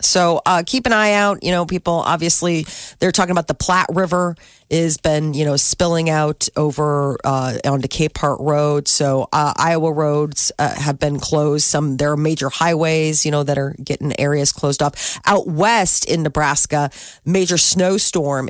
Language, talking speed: English, 175 wpm